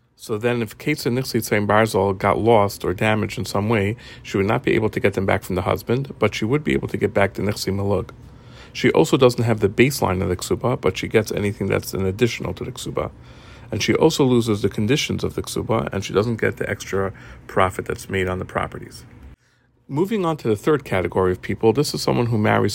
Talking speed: 235 wpm